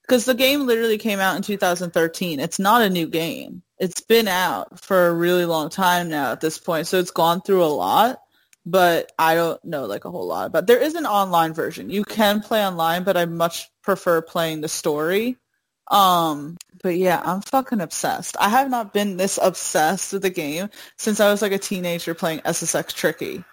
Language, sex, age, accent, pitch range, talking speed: English, female, 20-39, American, 175-210 Hz, 205 wpm